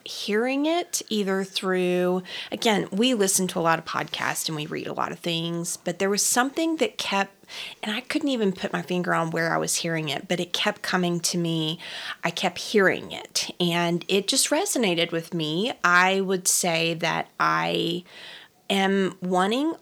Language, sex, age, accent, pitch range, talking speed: English, female, 30-49, American, 165-200 Hz, 185 wpm